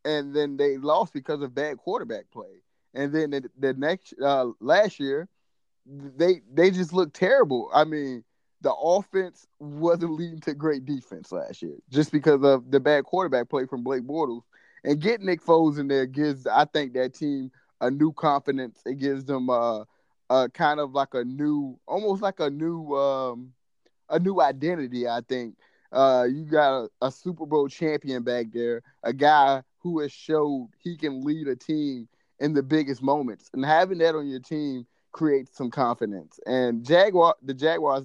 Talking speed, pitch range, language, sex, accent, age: 180 wpm, 130-150 Hz, English, male, American, 20-39